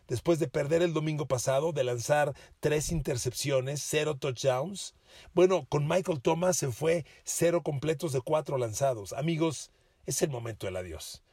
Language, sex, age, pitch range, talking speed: Spanish, male, 40-59, 120-160 Hz, 155 wpm